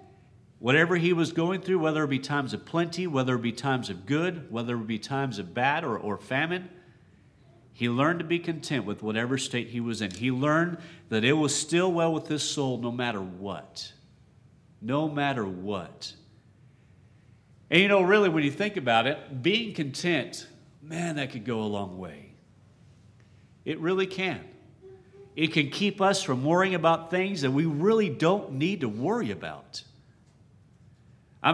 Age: 50-69